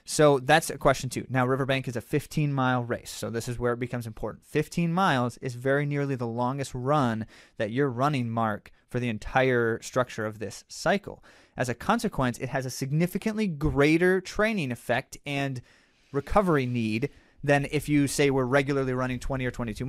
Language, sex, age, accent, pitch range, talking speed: English, male, 30-49, American, 125-165 Hz, 185 wpm